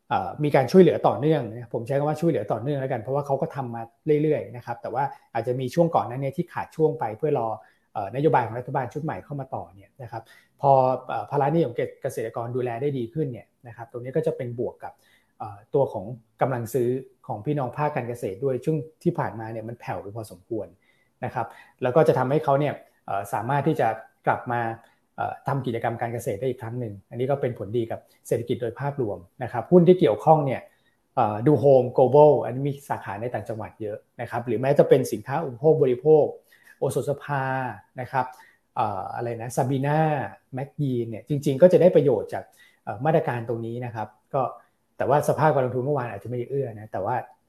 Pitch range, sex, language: 120-150 Hz, male, Thai